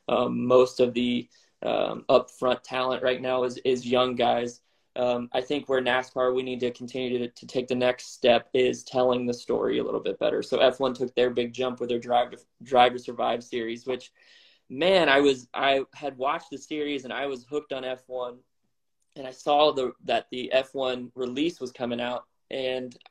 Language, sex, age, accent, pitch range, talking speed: English, male, 20-39, American, 125-135 Hz, 190 wpm